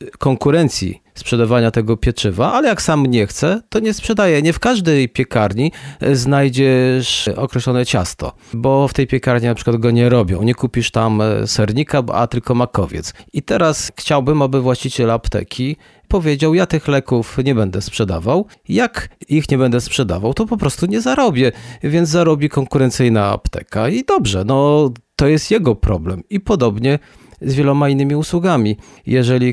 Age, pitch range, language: 40-59, 110-145 Hz, Polish